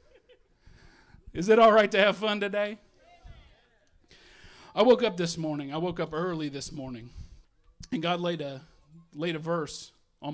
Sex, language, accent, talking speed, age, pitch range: male, English, American, 155 wpm, 40-59, 140-205 Hz